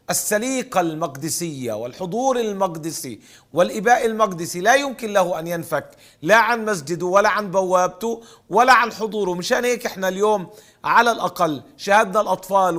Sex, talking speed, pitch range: male, 130 wpm, 175-215 Hz